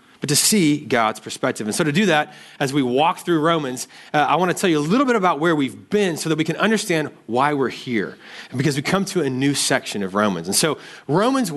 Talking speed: 255 wpm